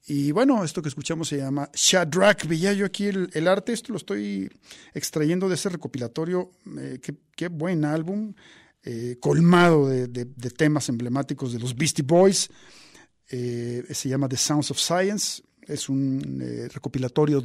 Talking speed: 165 wpm